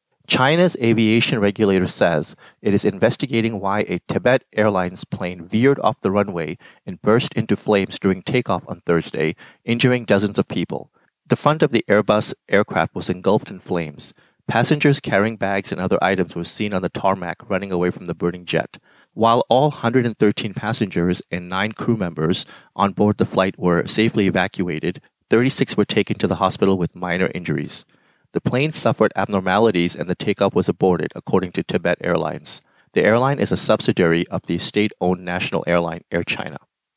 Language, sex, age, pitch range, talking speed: English, male, 30-49, 95-115 Hz, 170 wpm